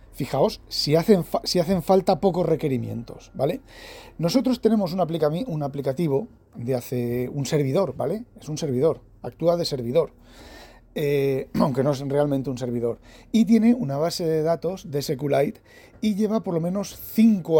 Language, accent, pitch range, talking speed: Spanish, Spanish, 125-165 Hz, 160 wpm